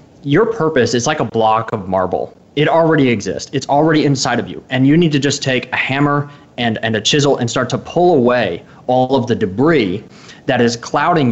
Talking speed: 210 wpm